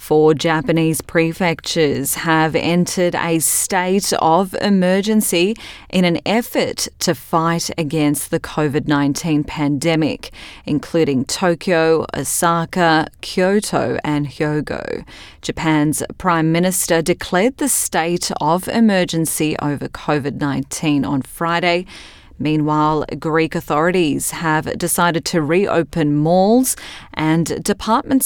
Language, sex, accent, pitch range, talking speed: English, female, Australian, 145-175 Hz, 100 wpm